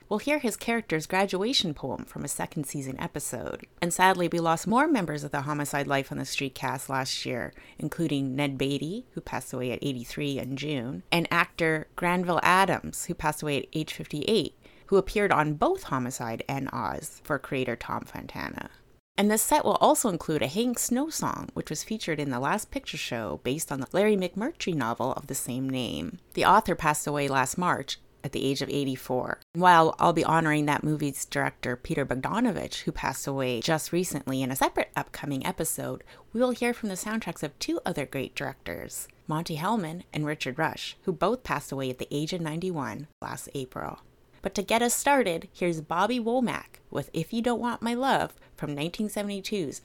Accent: American